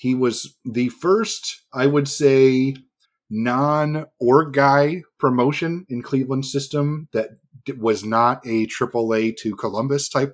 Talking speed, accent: 130 wpm, American